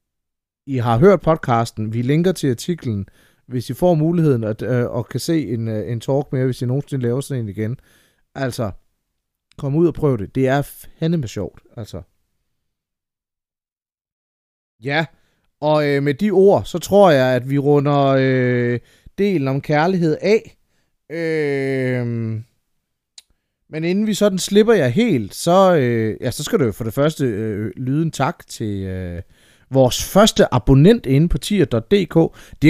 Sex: male